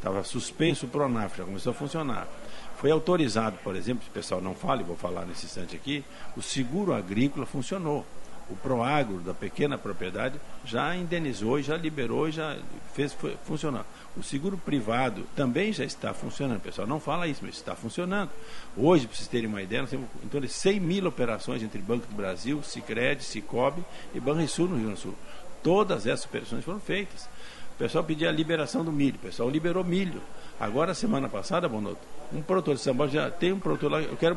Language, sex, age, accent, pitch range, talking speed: Portuguese, male, 60-79, Brazilian, 120-175 Hz, 195 wpm